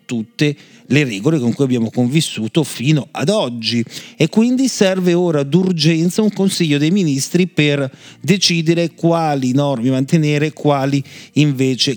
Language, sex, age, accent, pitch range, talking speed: Italian, male, 40-59, native, 125-155 Hz, 135 wpm